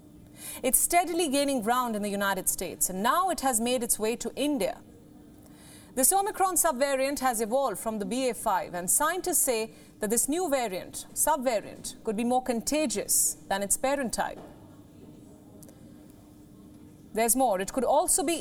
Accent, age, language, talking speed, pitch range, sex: Indian, 30-49, English, 155 wpm, 220-300 Hz, female